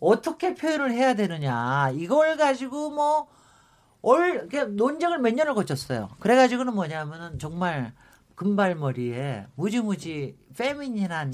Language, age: Korean, 50-69